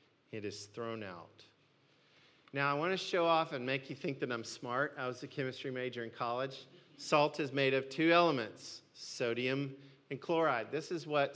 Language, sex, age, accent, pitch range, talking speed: English, male, 40-59, American, 115-140 Hz, 190 wpm